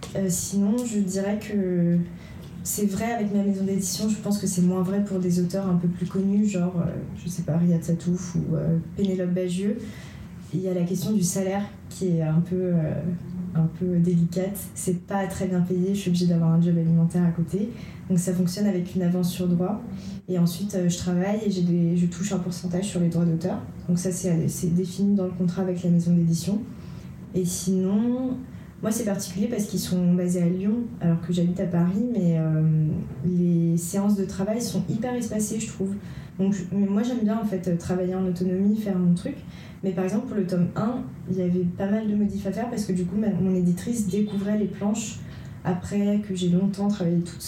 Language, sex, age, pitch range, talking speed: French, female, 20-39, 175-200 Hz, 220 wpm